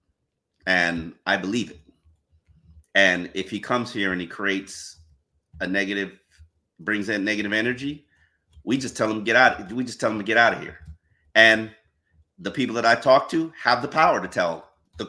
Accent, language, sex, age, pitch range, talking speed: American, English, male, 30-49, 80-110 Hz, 185 wpm